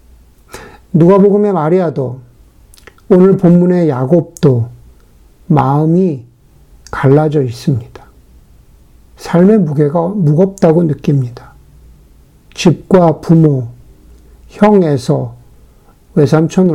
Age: 60-79